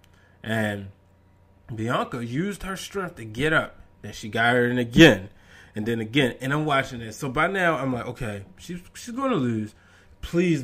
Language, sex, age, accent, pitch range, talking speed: English, male, 20-39, American, 115-180 Hz, 185 wpm